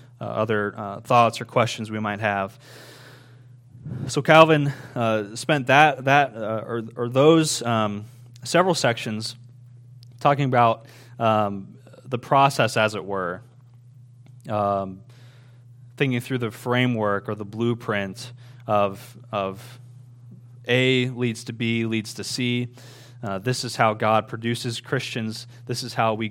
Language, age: English, 20-39